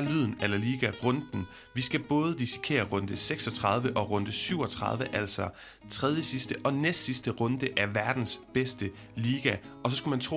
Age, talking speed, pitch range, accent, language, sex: 30-49, 170 wpm, 105-135 Hz, native, Danish, male